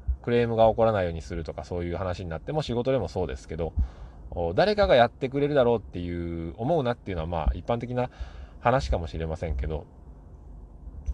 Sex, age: male, 20-39